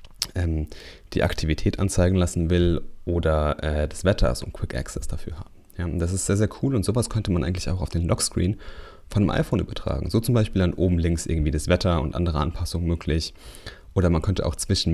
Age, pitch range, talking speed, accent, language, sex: 30-49, 80-95 Hz, 215 wpm, German, German, male